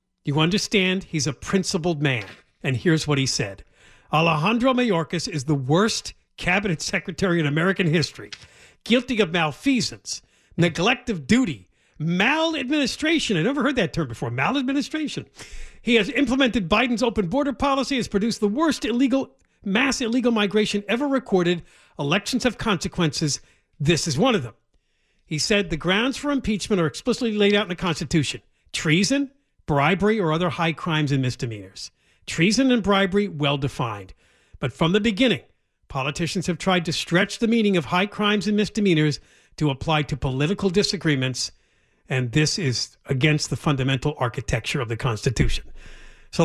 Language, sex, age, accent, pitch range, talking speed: English, male, 50-69, American, 145-210 Hz, 150 wpm